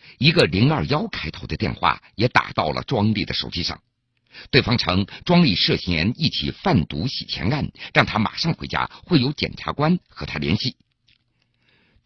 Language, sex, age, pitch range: Chinese, male, 50-69, 105-145 Hz